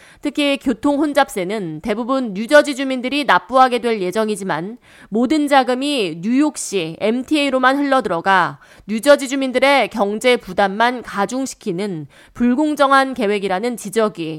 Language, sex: Korean, female